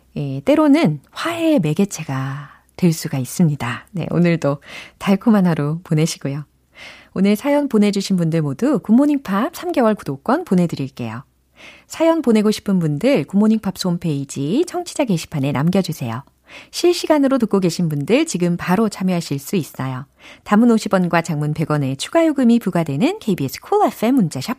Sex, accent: female, native